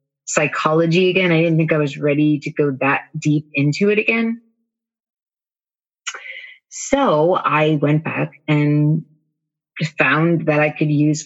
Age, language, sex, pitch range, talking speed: 30-49, English, female, 145-170 Hz, 135 wpm